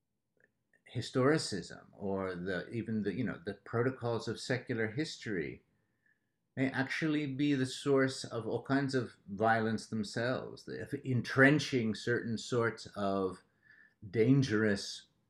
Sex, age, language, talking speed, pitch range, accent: male, 50-69, Malayalam, 120 wpm, 110-135 Hz, American